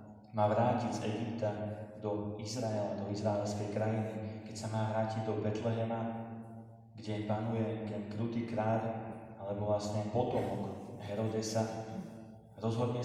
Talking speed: 115 wpm